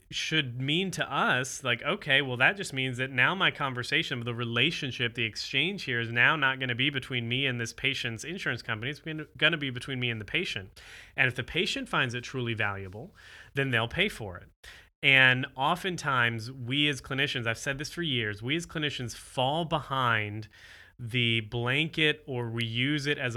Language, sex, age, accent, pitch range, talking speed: English, male, 30-49, American, 115-145 Hz, 195 wpm